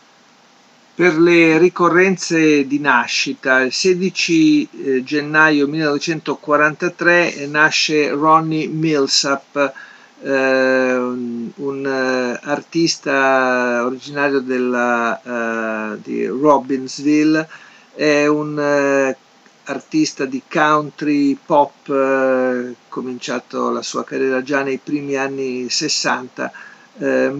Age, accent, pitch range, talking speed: 50-69, native, 125-150 Hz, 75 wpm